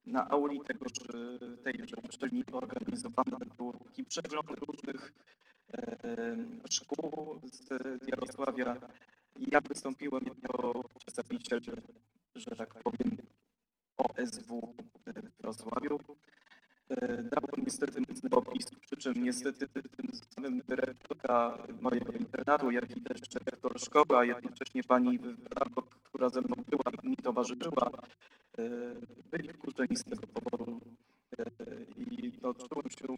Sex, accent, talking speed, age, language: male, native, 110 wpm, 20-39, Polish